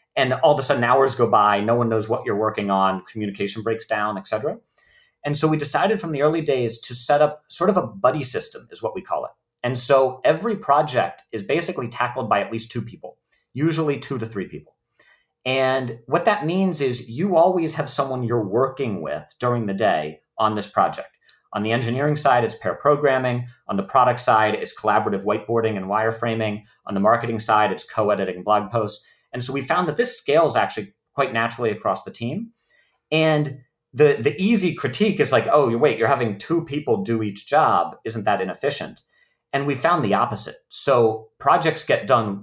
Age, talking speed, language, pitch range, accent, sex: 40-59, 200 wpm, English, 110-150 Hz, American, male